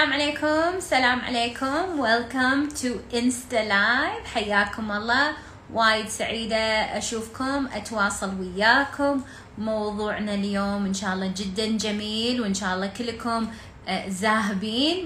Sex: female